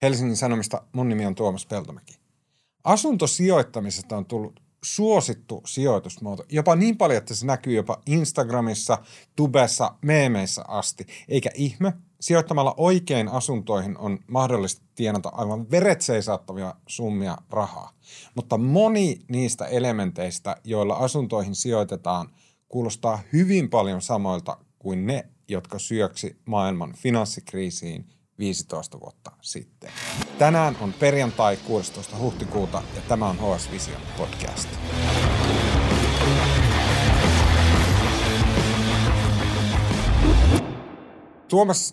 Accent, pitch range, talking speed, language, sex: native, 100-150 Hz, 95 wpm, Finnish, male